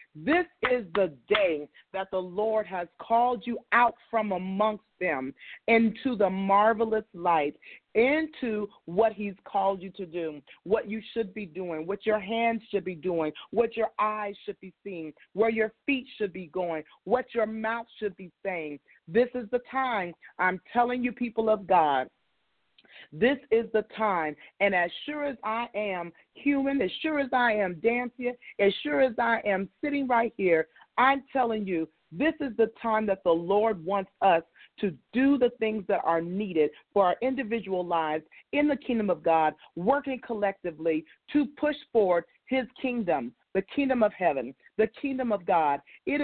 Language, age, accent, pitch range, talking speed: English, 40-59, American, 185-245 Hz, 175 wpm